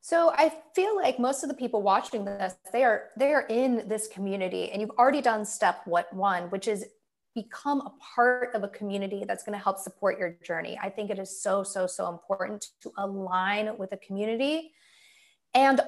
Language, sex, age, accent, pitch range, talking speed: English, female, 20-39, American, 195-255 Hz, 195 wpm